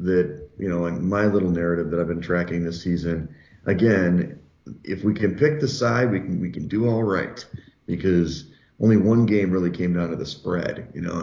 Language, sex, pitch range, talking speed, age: English, male, 85-100 Hz, 210 wpm, 40-59